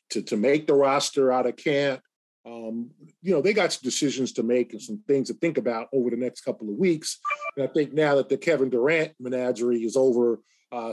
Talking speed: 225 wpm